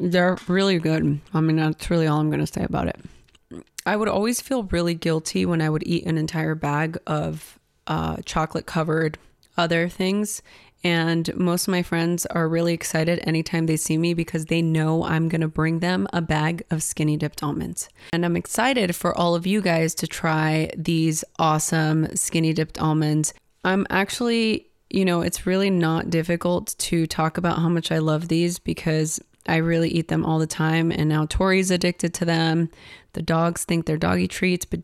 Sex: female